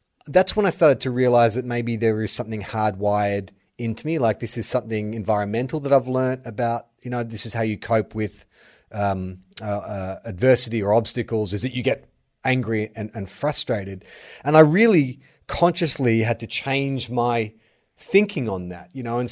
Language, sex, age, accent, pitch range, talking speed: English, male, 30-49, Australian, 105-130 Hz, 185 wpm